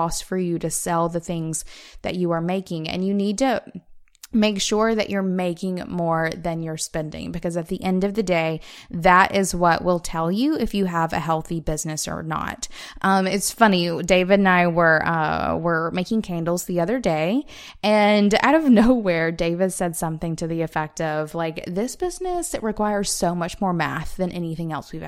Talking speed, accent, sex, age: 195 wpm, American, female, 20-39